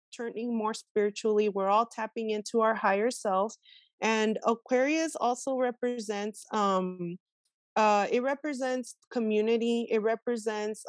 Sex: female